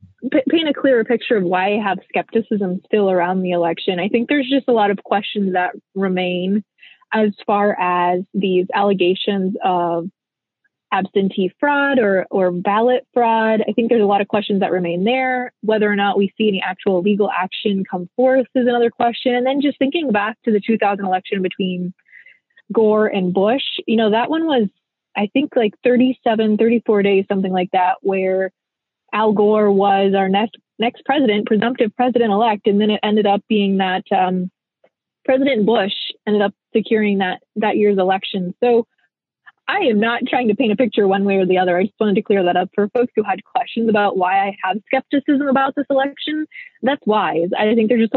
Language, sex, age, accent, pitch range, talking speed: English, female, 20-39, American, 195-240 Hz, 190 wpm